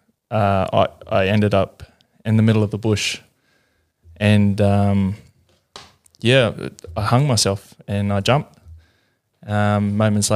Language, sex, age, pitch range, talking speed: English, male, 20-39, 100-110 Hz, 125 wpm